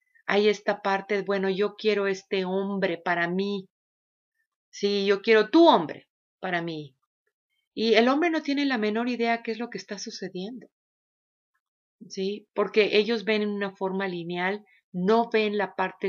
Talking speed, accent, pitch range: 160 wpm, Mexican, 190-230 Hz